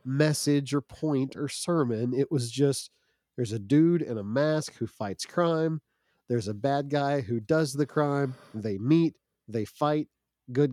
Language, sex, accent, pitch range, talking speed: English, male, American, 125-155 Hz, 170 wpm